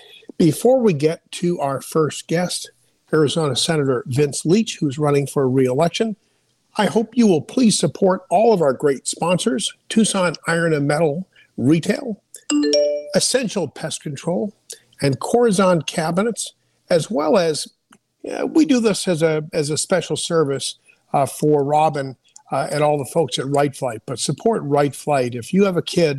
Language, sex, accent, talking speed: English, male, American, 160 wpm